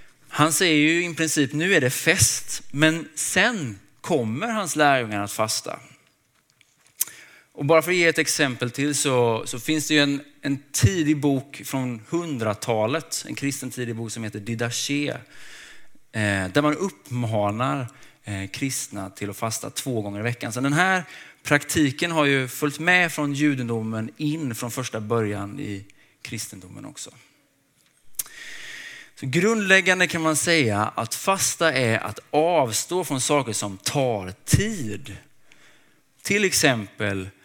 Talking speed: 135 wpm